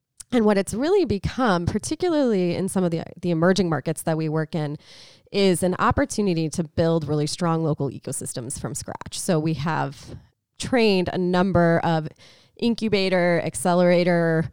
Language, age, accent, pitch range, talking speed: English, 20-39, American, 150-185 Hz, 155 wpm